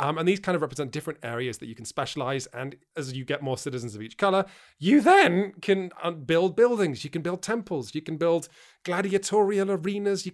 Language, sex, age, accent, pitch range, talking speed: English, male, 30-49, British, 130-180 Hz, 210 wpm